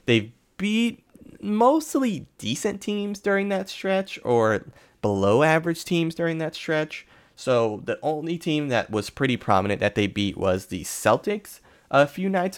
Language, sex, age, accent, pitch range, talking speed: English, male, 20-39, American, 95-155 Hz, 155 wpm